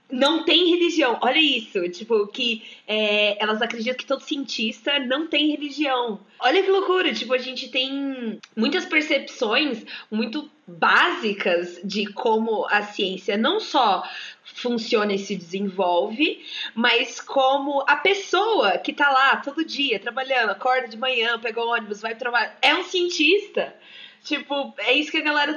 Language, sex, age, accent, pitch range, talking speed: Portuguese, female, 20-39, Brazilian, 200-290 Hz, 150 wpm